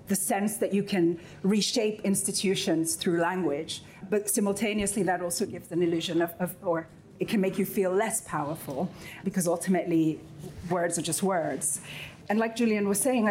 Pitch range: 165-200 Hz